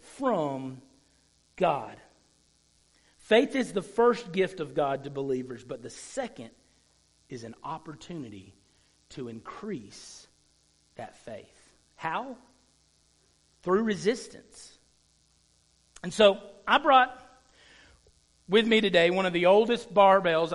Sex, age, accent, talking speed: male, 50-69, American, 105 wpm